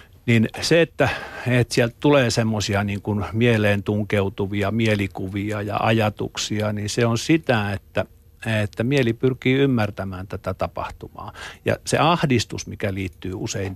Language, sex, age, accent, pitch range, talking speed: Finnish, male, 50-69, native, 95-120 Hz, 135 wpm